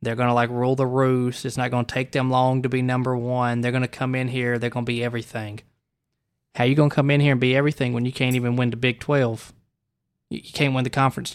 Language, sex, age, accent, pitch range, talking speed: English, male, 20-39, American, 120-135 Hz, 255 wpm